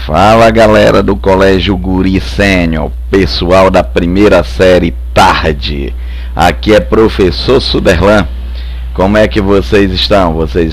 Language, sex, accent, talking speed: Portuguese, male, Brazilian, 115 wpm